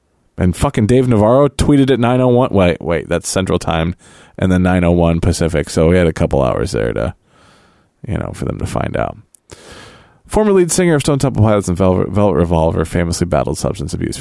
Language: English